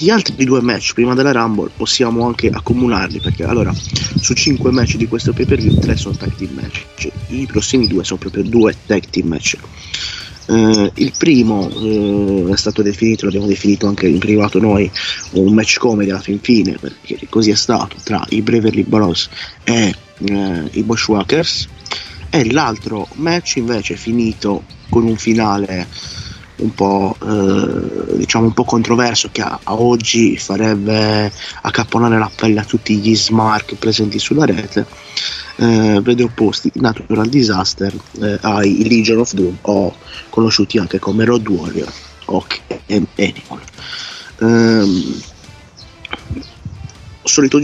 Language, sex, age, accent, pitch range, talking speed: Italian, male, 30-49, native, 100-120 Hz, 145 wpm